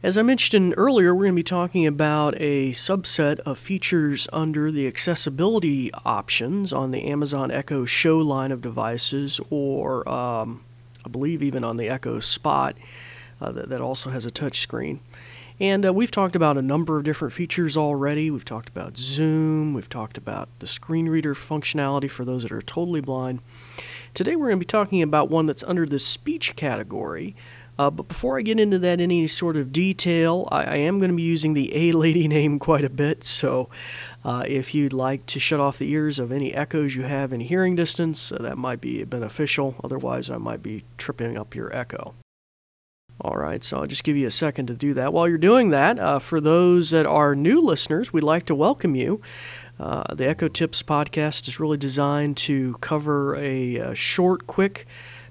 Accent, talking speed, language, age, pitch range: American, 195 wpm, English, 40-59, 130-165 Hz